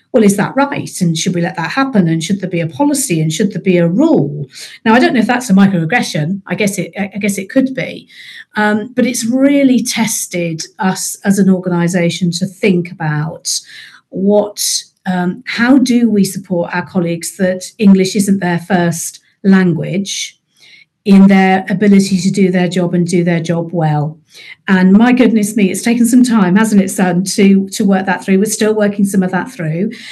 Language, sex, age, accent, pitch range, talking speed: English, female, 40-59, British, 180-220 Hz, 195 wpm